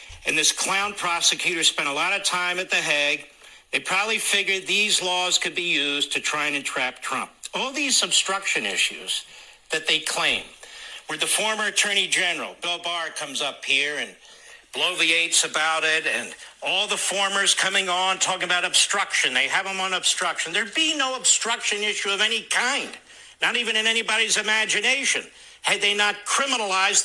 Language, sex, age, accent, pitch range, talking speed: English, male, 60-79, American, 205-315 Hz, 170 wpm